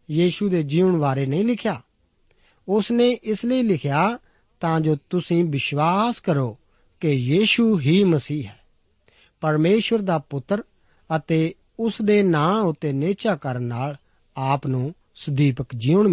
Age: 50-69